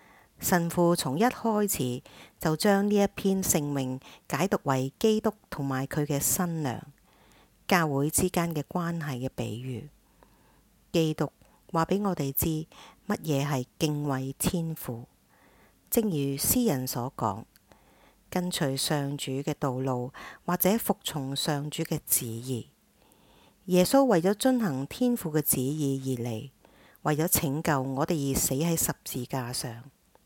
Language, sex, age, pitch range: English, female, 50-69, 135-175 Hz